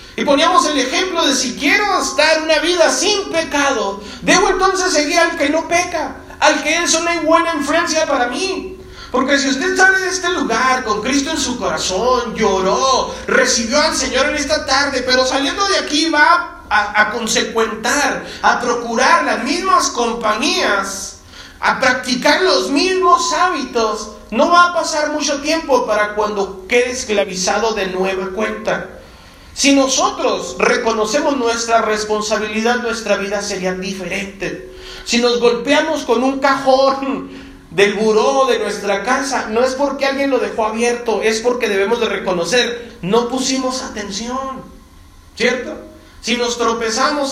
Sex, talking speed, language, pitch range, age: male, 145 wpm, Spanish, 225-300 Hz, 40-59